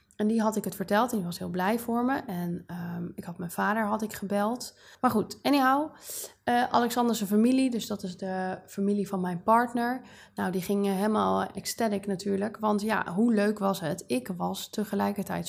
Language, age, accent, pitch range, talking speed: Dutch, 20-39, Dutch, 190-225 Hz, 200 wpm